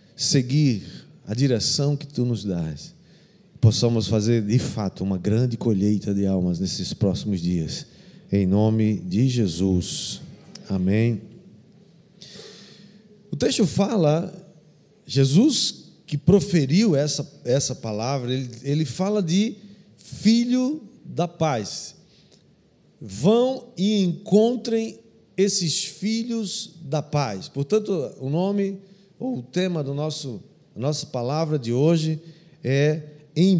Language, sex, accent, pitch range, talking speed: Portuguese, male, Brazilian, 135-195 Hz, 105 wpm